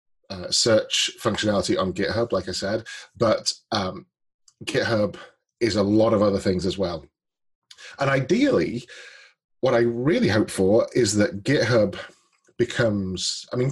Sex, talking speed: male, 140 wpm